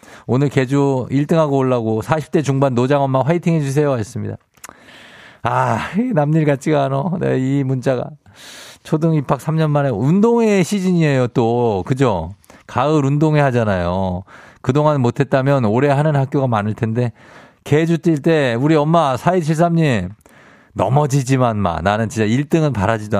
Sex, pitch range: male, 105-145 Hz